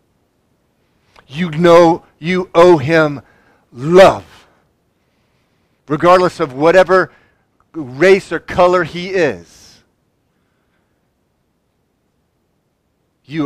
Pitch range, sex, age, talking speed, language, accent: 120-165 Hz, male, 50-69, 65 wpm, English, American